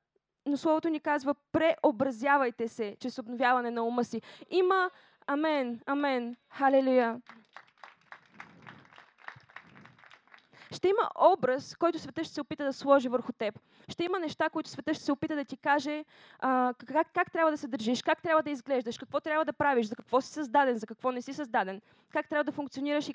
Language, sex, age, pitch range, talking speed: Bulgarian, female, 20-39, 250-310 Hz, 175 wpm